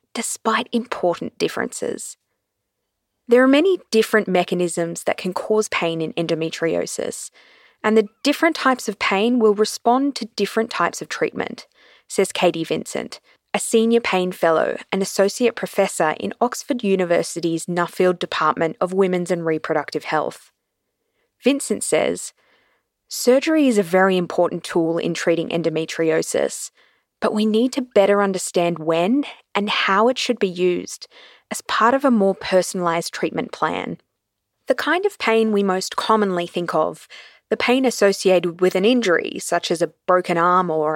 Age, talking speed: 20-39, 145 wpm